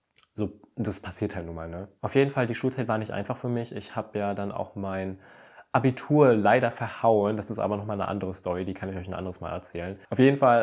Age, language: 20-39, German